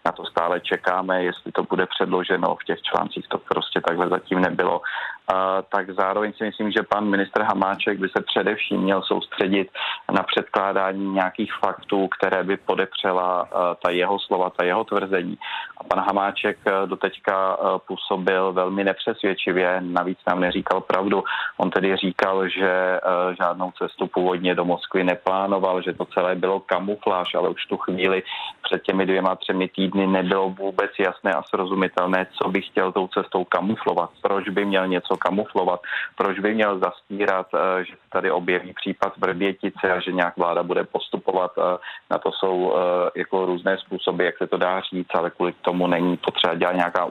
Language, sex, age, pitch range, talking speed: Czech, male, 30-49, 90-95 Hz, 160 wpm